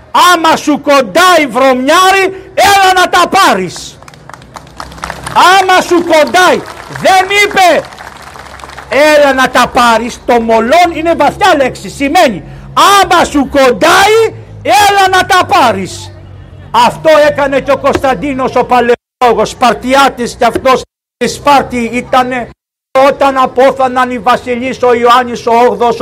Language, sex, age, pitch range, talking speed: Greek, male, 60-79, 245-295 Hz, 120 wpm